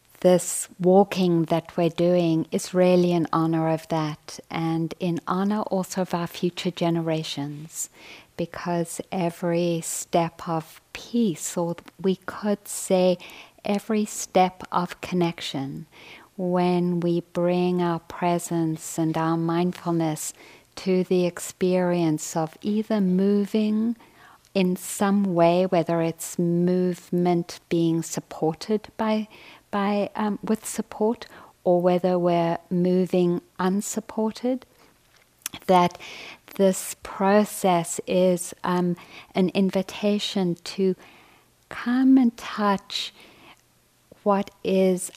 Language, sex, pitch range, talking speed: English, female, 165-190 Hz, 100 wpm